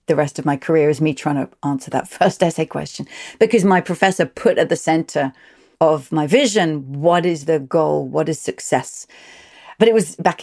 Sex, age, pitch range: female, 40-59, 160-200 Hz